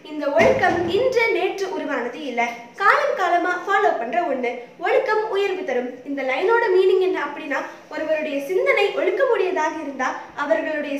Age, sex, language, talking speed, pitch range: 20-39, female, Tamil, 130 wpm, 270-395 Hz